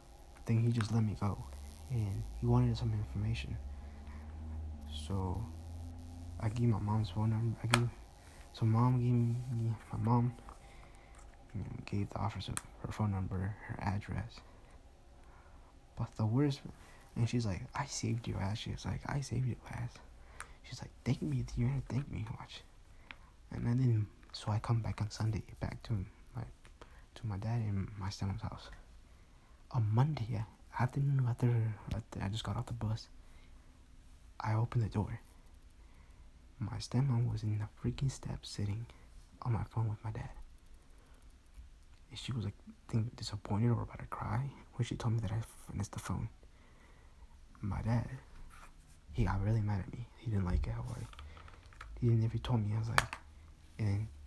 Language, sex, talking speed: English, male, 160 wpm